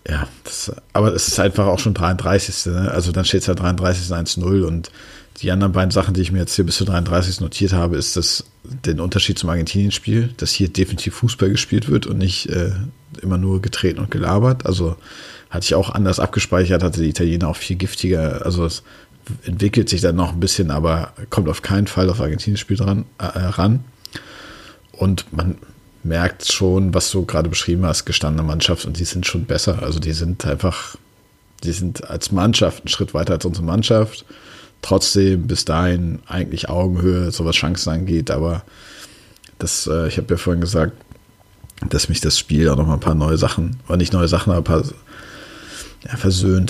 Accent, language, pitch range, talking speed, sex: German, German, 85-100 Hz, 190 wpm, male